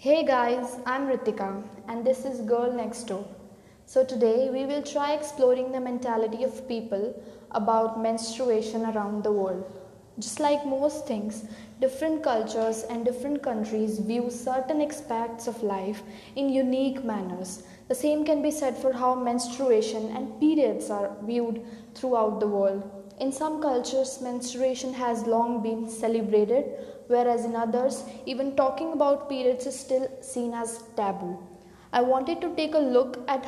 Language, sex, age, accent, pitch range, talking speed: English, female, 20-39, Indian, 220-265 Hz, 150 wpm